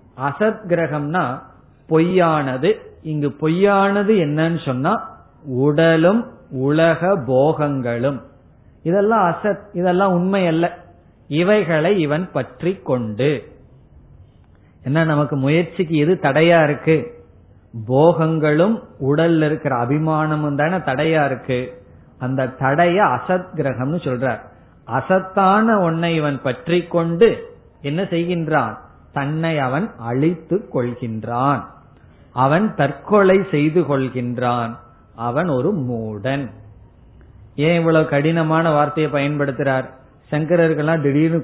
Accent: native